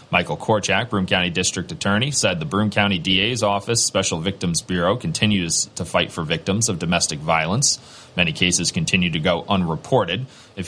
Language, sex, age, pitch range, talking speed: English, male, 30-49, 90-110 Hz, 170 wpm